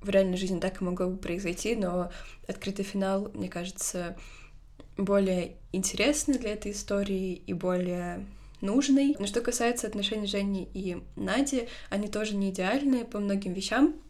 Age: 20-39